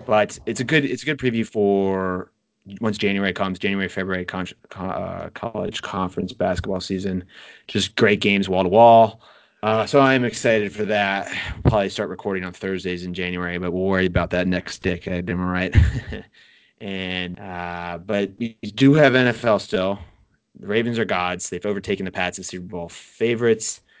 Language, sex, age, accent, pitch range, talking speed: English, male, 20-39, American, 95-105 Hz, 170 wpm